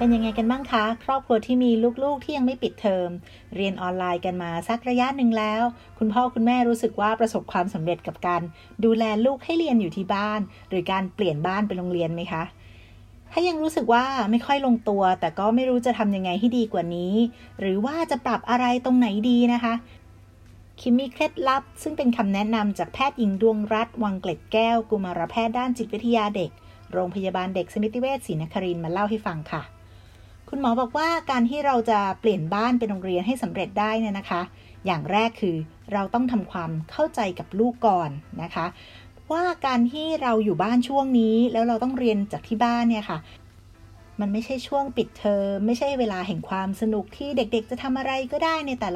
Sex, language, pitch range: female, Thai, 185-245 Hz